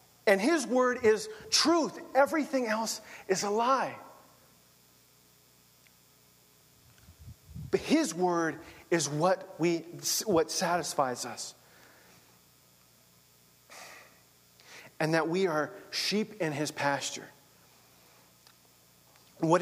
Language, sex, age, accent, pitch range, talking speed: English, male, 40-59, American, 125-170 Hz, 85 wpm